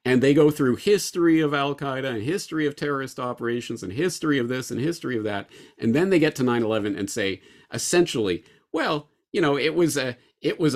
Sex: male